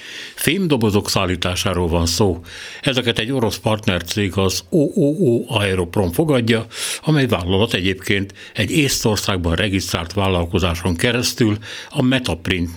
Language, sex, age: Hungarian, male, 60-79